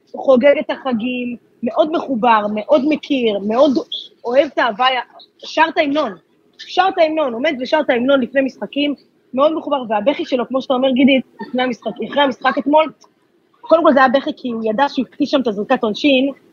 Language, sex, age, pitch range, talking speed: Hebrew, female, 20-39, 230-285 Hz, 165 wpm